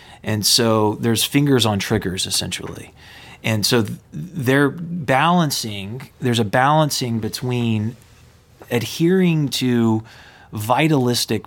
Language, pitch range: English, 110-135 Hz